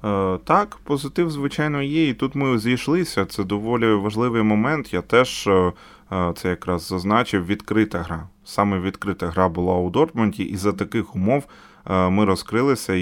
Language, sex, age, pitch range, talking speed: Ukrainian, male, 20-39, 95-115 Hz, 145 wpm